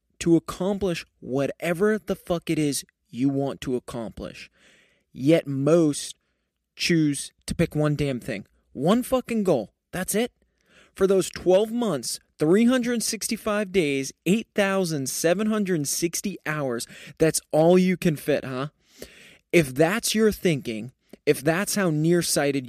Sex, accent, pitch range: male, American, 135-180 Hz